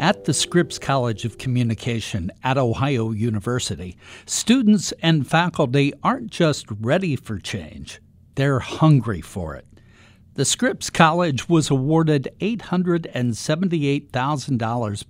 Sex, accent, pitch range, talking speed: male, American, 115-170 Hz, 105 wpm